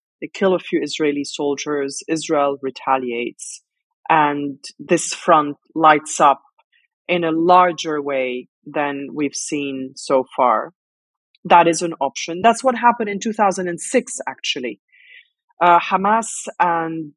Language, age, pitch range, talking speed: English, 30-49, 145-200 Hz, 120 wpm